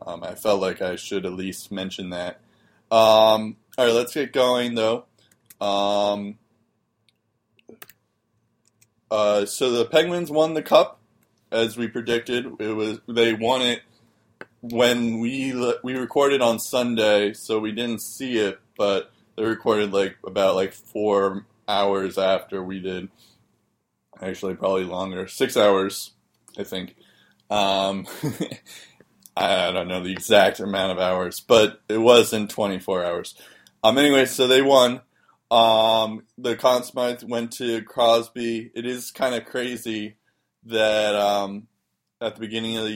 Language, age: English, 20-39